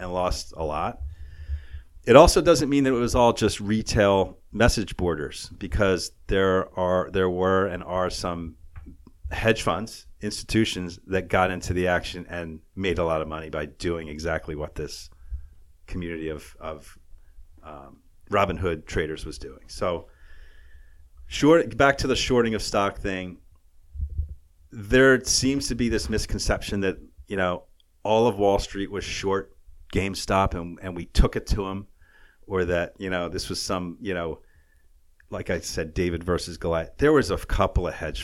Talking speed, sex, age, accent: 165 wpm, male, 40-59, American